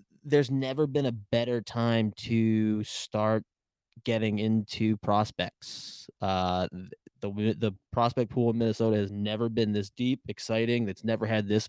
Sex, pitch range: male, 105-125 Hz